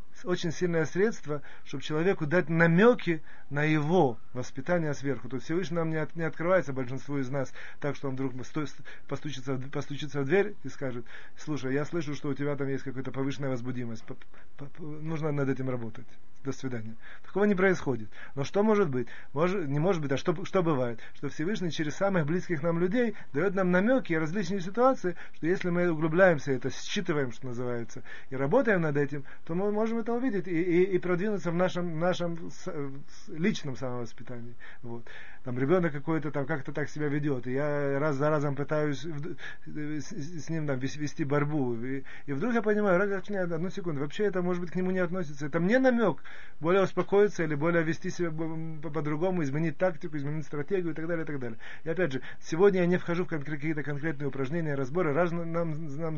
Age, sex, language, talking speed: 30-49, male, Russian, 190 wpm